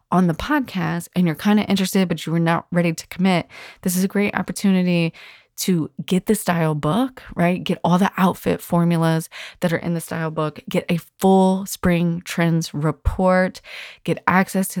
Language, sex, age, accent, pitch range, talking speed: English, female, 30-49, American, 155-185 Hz, 185 wpm